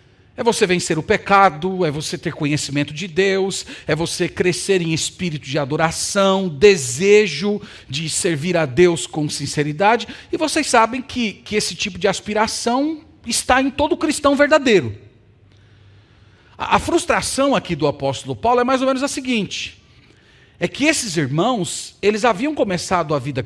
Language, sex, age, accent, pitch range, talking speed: Portuguese, male, 40-59, Brazilian, 150-245 Hz, 155 wpm